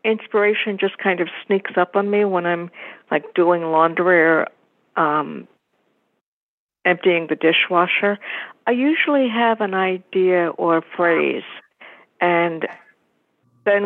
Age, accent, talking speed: 60-79, American, 120 wpm